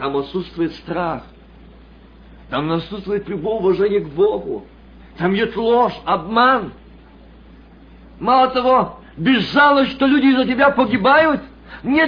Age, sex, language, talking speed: 50-69, male, Russian, 115 wpm